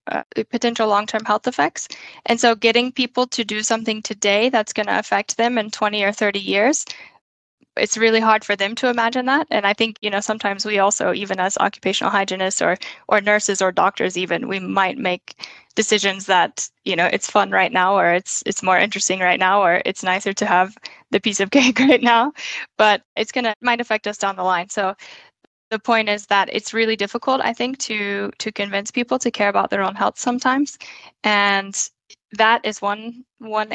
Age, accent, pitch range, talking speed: 10-29, American, 200-230 Hz, 200 wpm